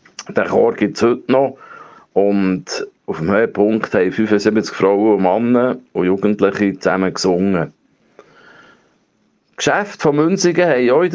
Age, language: 50-69, German